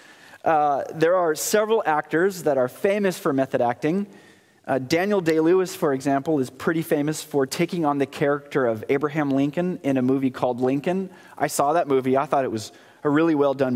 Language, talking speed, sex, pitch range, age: English, 190 wpm, male, 135-190 Hz, 30-49